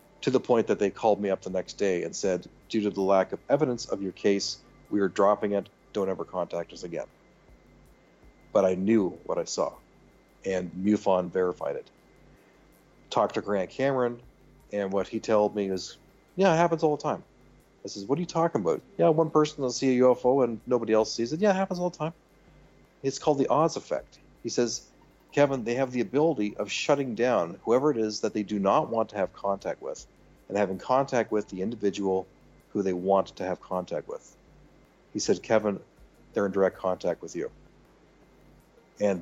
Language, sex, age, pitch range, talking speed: English, male, 40-59, 95-120 Hz, 200 wpm